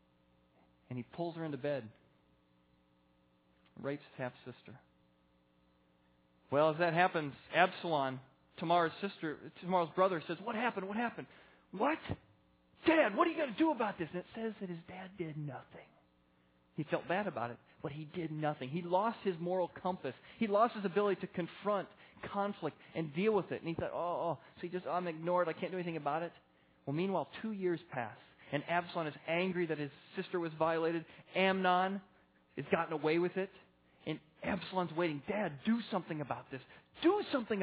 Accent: American